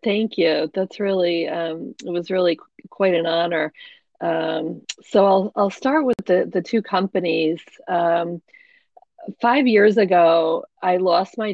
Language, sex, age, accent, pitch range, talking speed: English, female, 40-59, American, 165-195 Hz, 150 wpm